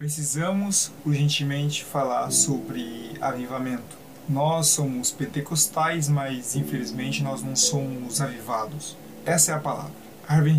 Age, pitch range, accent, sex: 20-39, 135-155 Hz, Brazilian, male